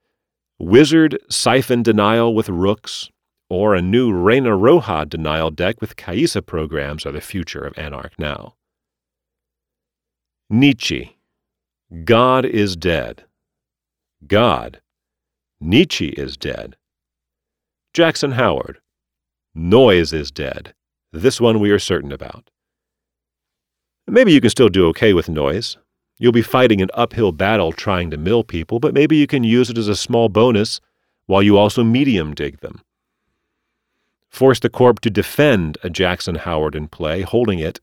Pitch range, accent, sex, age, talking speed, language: 80-115 Hz, American, male, 40-59, 135 wpm, English